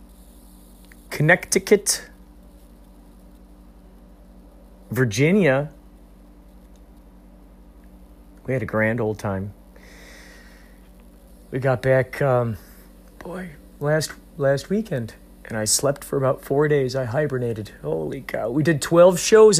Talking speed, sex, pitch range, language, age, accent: 95 wpm, male, 95-150 Hz, English, 40-59, American